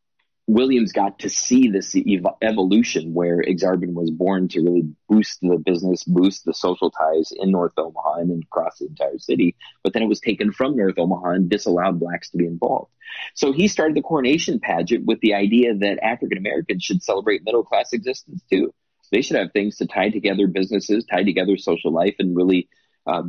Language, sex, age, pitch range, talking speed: English, male, 30-49, 85-105 Hz, 190 wpm